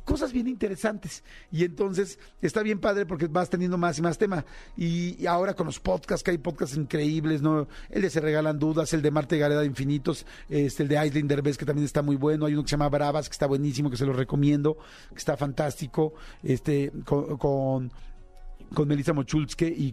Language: Spanish